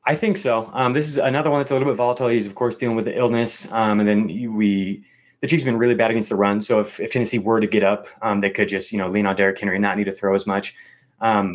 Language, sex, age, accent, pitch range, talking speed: English, male, 20-39, American, 105-125 Hz, 310 wpm